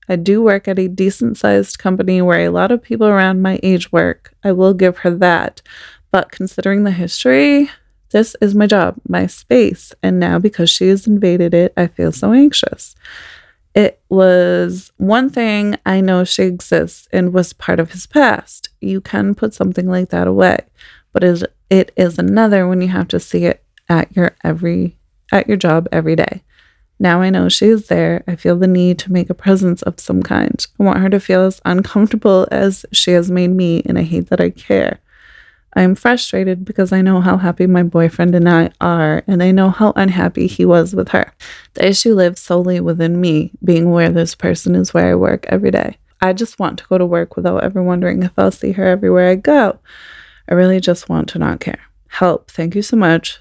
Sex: female